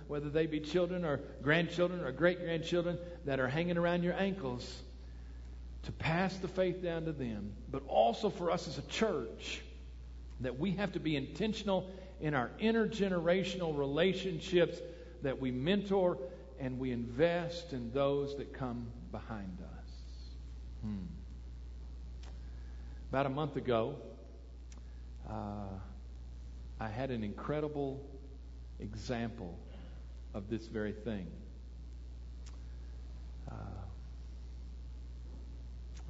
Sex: male